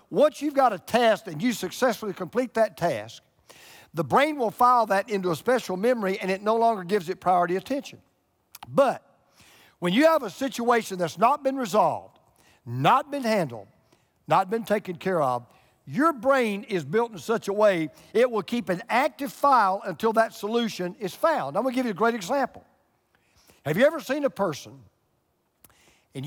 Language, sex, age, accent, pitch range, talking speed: English, male, 50-69, American, 180-250 Hz, 185 wpm